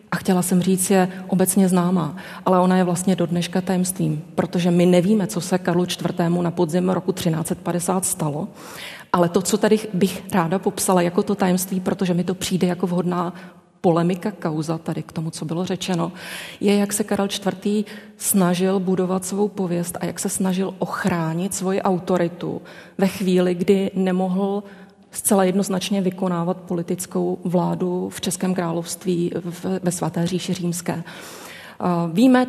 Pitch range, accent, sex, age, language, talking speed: 175-195 Hz, native, female, 30-49, Czech, 155 wpm